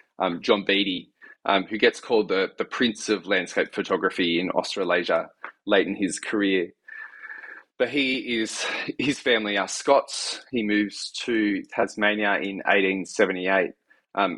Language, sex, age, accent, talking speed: English, male, 20-39, Australian, 140 wpm